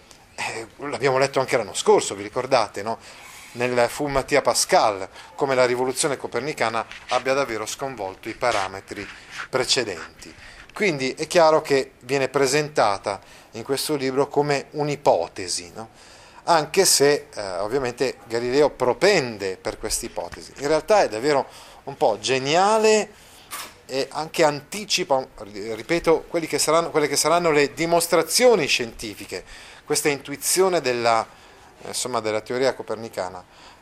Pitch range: 125-165 Hz